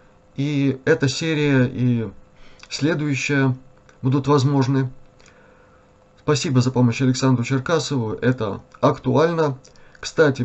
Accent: native